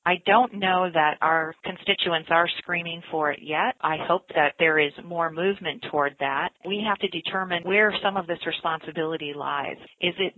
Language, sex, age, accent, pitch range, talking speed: English, female, 40-59, American, 155-190 Hz, 185 wpm